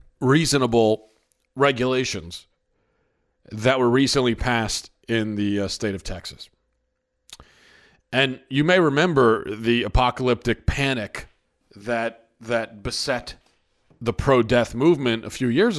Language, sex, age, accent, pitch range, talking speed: English, male, 40-59, American, 105-130 Hz, 105 wpm